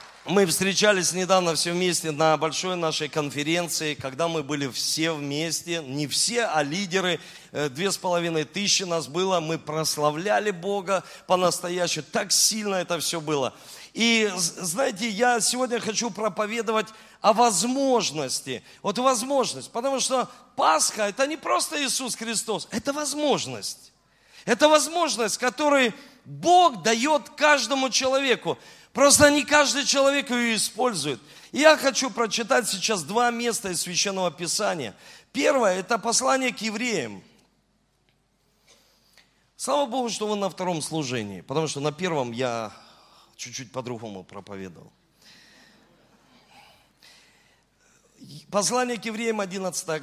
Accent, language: native, Russian